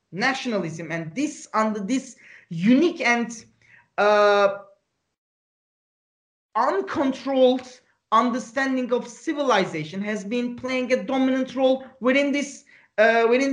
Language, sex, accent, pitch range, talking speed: Turkish, male, Israeli, 200-255 Hz, 100 wpm